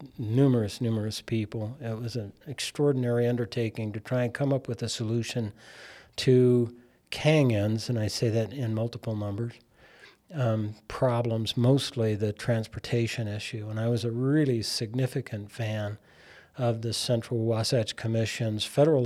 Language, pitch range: English, 110-125 Hz